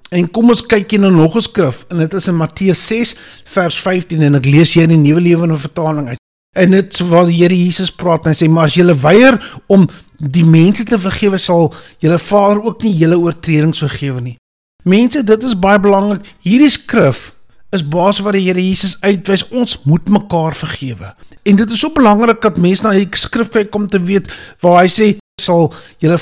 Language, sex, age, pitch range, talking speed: English, male, 50-69, 160-215 Hz, 210 wpm